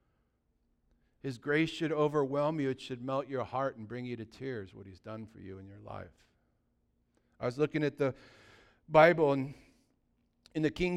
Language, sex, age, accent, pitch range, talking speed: English, male, 50-69, American, 140-180 Hz, 180 wpm